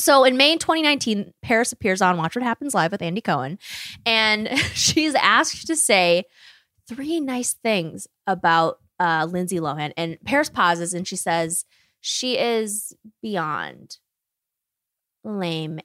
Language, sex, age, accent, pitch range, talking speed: English, female, 20-39, American, 175-260 Hz, 135 wpm